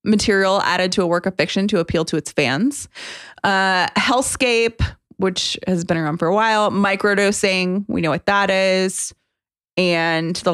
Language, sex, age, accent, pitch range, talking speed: English, female, 20-39, American, 175-245 Hz, 165 wpm